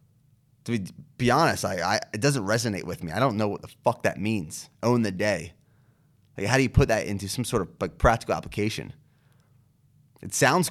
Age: 30-49